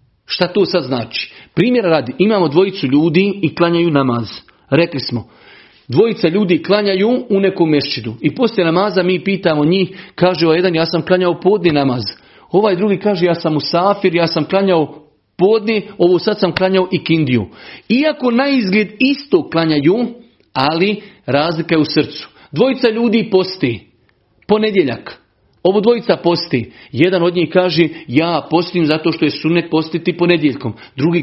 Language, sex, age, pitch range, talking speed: Croatian, male, 40-59, 150-190 Hz, 150 wpm